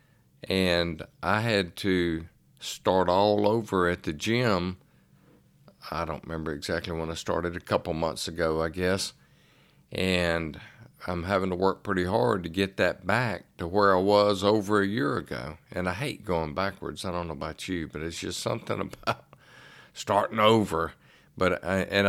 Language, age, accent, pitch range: English, 50-69, American, 85-105 Hz